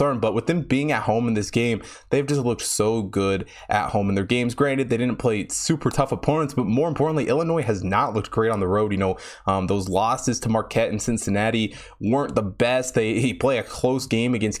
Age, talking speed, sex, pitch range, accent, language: 20-39, 230 wpm, male, 100-140 Hz, American, English